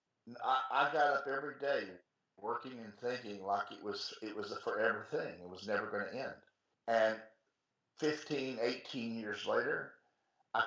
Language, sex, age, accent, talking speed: English, male, 50-69, American, 165 wpm